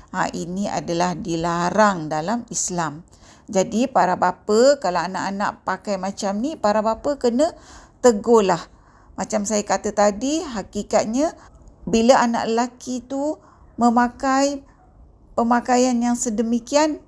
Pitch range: 195-240 Hz